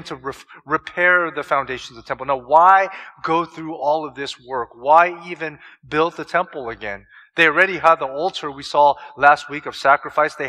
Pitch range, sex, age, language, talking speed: 160-215 Hz, male, 30-49, English, 190 wpm